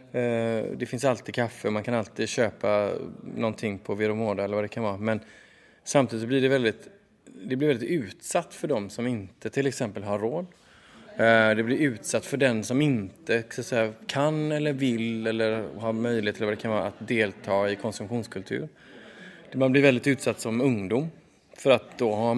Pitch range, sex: 110-135 Hz, male